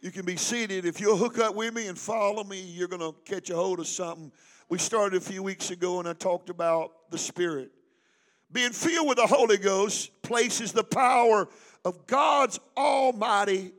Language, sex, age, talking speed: English, male, 50-69, 195 wpm